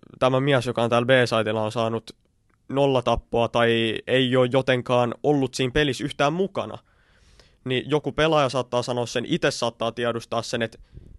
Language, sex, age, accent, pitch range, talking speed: Finnish, male, 20-39, native, 115-135 Hz, 160 wpm